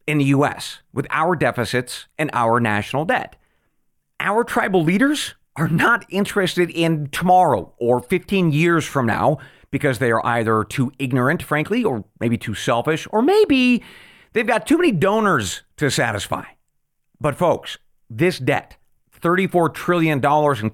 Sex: male